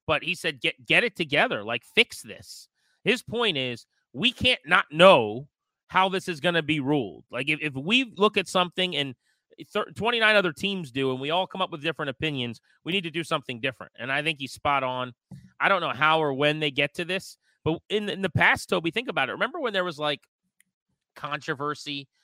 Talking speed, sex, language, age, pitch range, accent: 220 wpm, male, English, 30-49, 130-170 Hz, American